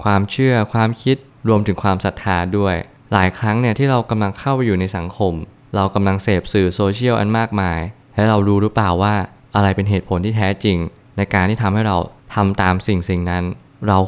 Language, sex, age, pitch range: Thai, male, 20-39, 95-115 Hz